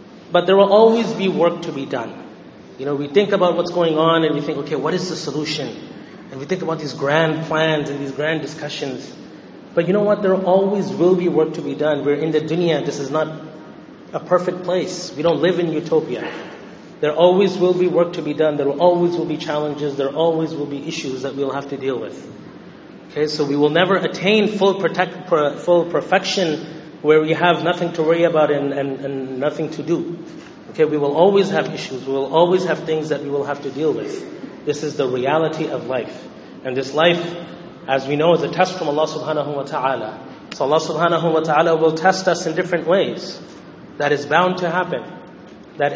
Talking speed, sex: 215 wpm, male